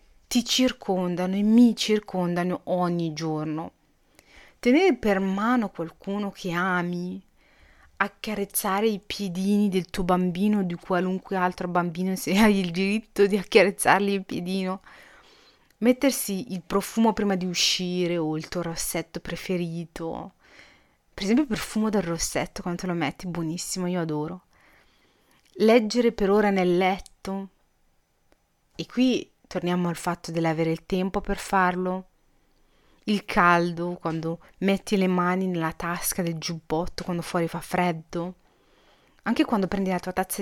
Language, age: Italian, 30-49